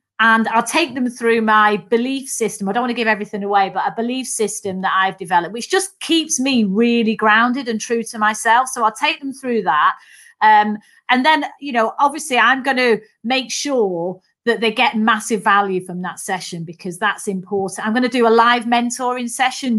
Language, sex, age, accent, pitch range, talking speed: English, female, 30-49, British, 210-265 Hz, 205 wpm